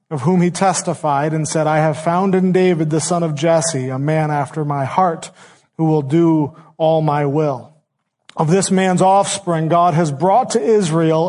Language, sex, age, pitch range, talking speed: English, male, 40-59, 160-200 Hz, 185 wpm